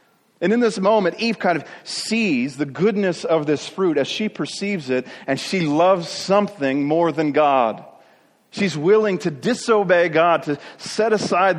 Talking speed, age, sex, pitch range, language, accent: 165 wpm, 40-59, male, 135-175 Hz, English, American